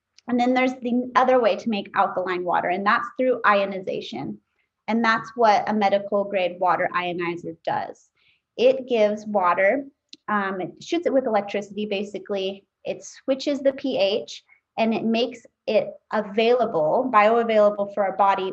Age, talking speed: 20-39, 150 wpm